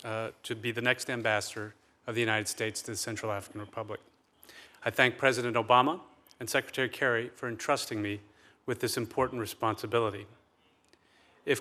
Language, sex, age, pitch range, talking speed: English, male, 40-59, 115-140 Hz, 155 wpm